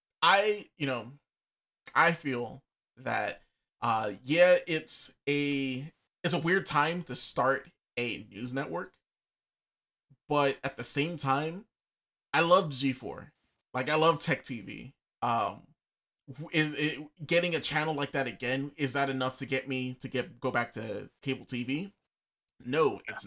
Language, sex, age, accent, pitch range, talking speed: English, male, 20-39, American, 125-155 Hz, 145 wpm